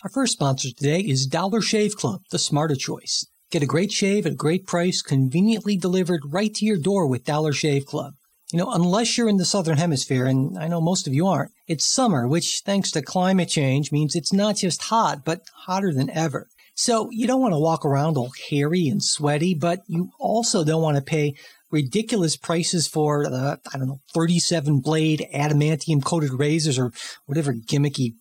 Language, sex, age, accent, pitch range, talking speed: English, male, 50-69, American, 145-185 Hz, 200 wpm